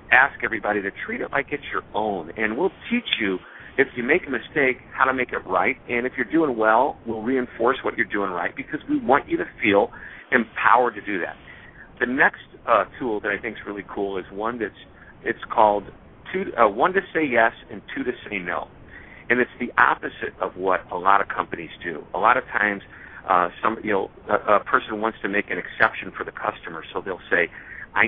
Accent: American